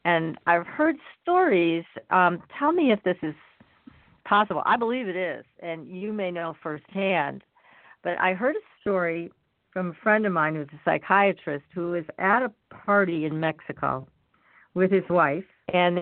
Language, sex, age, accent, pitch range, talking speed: English, female, 50-69, American, 170-215 Hz, 165 wpm